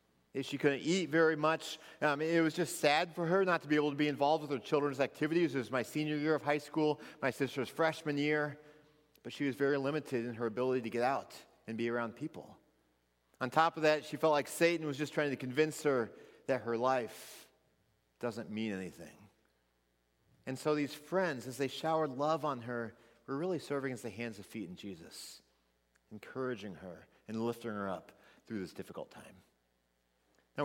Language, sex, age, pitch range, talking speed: English, male, 30-49, 115-155 Hz, 200 wpm